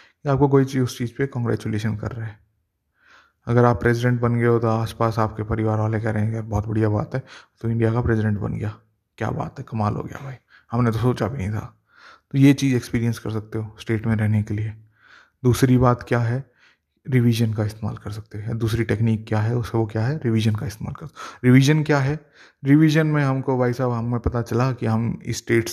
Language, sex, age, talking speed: Hindi, male, 30-49, 225 wpm